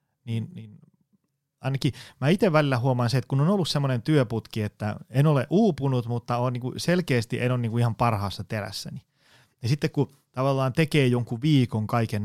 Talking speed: 165 wpm